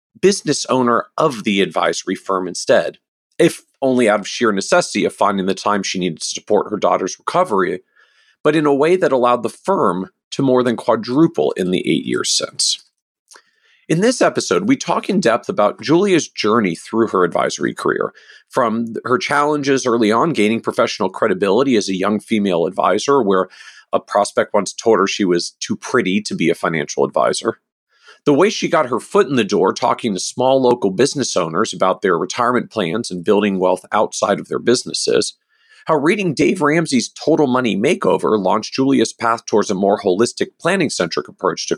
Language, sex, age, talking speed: English, male, 40-59, 180 wpm